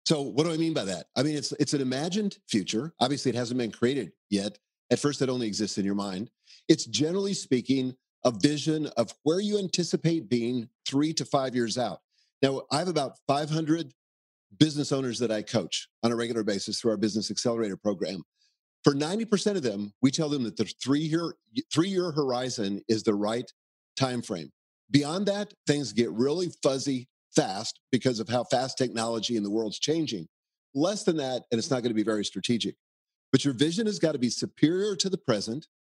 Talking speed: 195 wpm